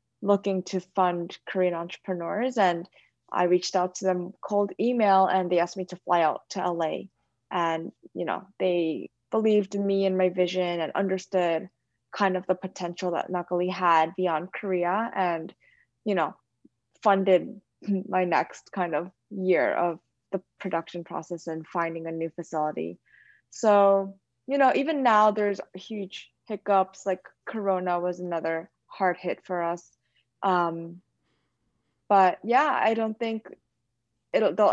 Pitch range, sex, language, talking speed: 175-195 Hz, female, English, 145 wpm